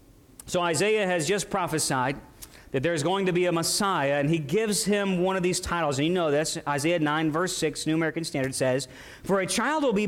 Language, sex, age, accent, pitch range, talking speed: English, male, 40-59, American, 145-205 Hz, 225 wpm